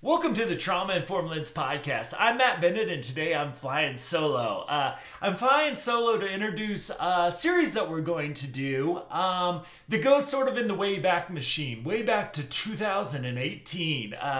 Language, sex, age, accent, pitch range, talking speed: English, male, 30-49, American, 145-190 Hz, 175 wpm